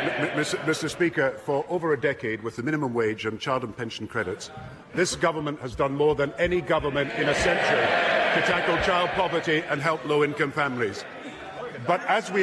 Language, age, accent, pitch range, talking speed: English, 50-69, British, 140-175 Hz, 180 wpm